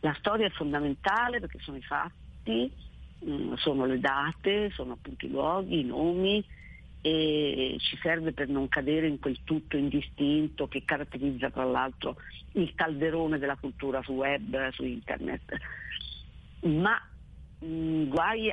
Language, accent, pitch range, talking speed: Italian, native, 135-165 Hz, 135 wpm